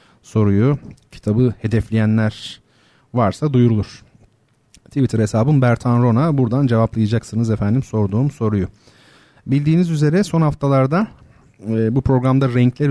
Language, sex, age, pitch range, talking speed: Turkish, male, 40-59, 110-135 Hz, 100 wpm